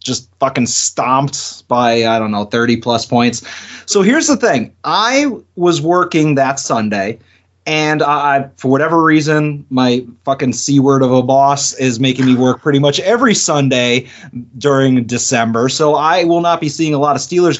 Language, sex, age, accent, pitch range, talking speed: English, male, 30-49, American, 130-170 Hz, 165 wpm